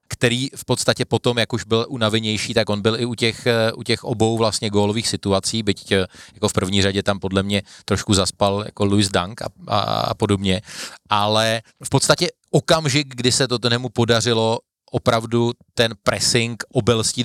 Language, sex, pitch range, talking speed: Slovak, male, 105-120 Hz, 175 wpm